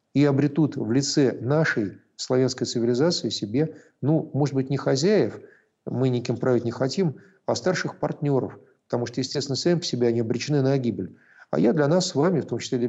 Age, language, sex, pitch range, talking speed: 50-69, Russian, male, 120-155 Hz, 190 wpm